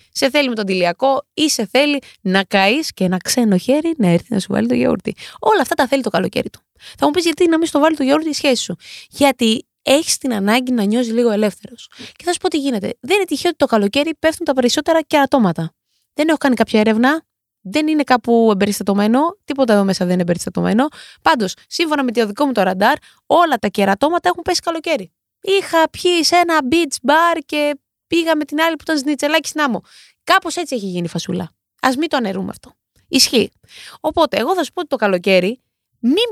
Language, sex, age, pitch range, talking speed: Greek, female, 20-39, 210-310 Hz, 215 wpm